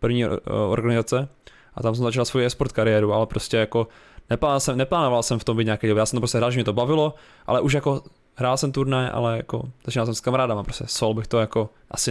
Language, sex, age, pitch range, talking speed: Czech, male, 20-39, 115-135 Hz, 235 wpm